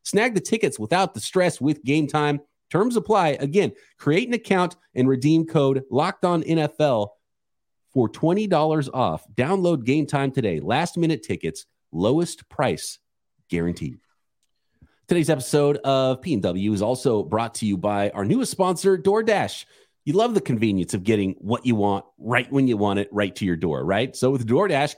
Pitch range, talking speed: 115-170 Hz, 160 wpm